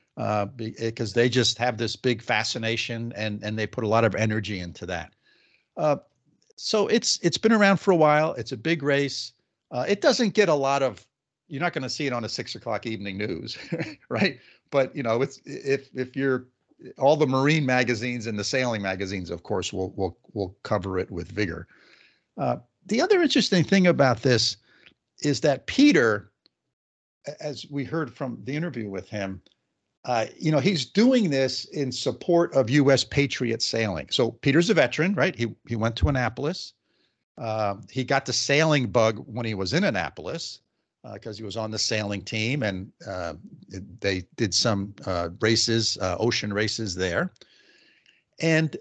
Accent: American